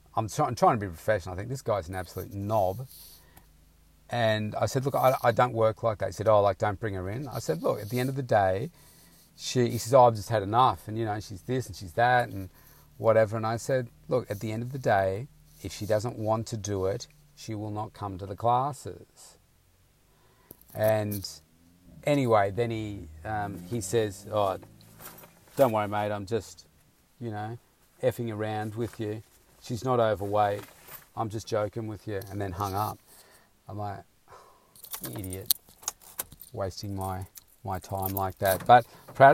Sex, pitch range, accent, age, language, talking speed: male, 95-120 Hz, Australian, 40-59, English, 190 wpm